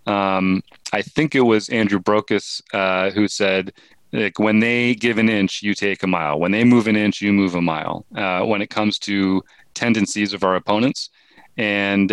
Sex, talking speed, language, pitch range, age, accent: male, 195 wpm, English, 95-115 Hz, 30-49, American